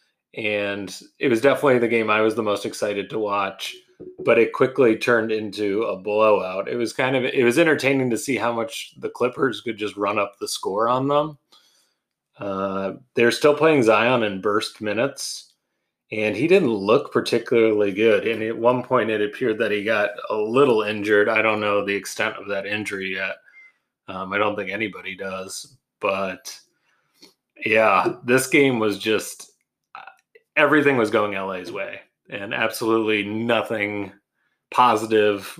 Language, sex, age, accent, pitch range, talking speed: English, male, 30-49, American, 100-130 Hz, 165 wpm